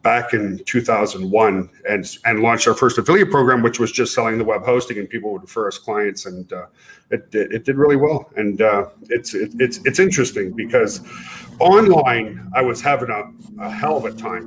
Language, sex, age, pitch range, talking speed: English, male, 40-59, 115-145 Hz, 195 wpm